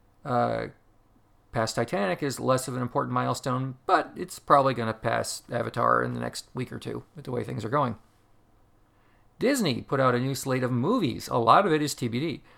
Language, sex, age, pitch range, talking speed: English, male, 40-59, 115-140 Hz, 200 wpm